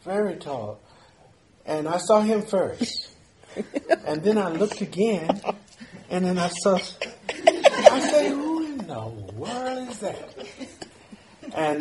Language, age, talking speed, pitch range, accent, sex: English, 50-69, 125 wpm, 130-170 Hz, American, male